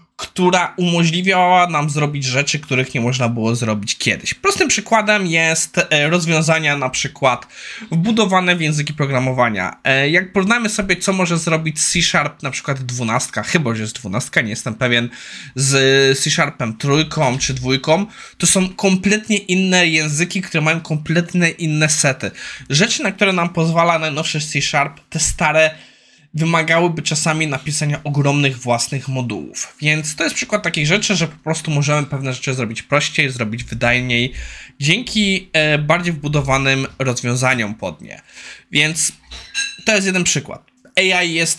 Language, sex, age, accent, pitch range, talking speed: Polish, male, 20-39, native, 135-180 Hz, 140 wpm